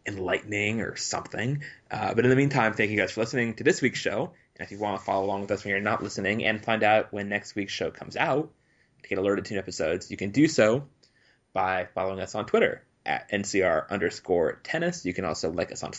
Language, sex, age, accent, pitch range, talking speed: English, male, 20-39, American, 95-120 Hz, 240 wpm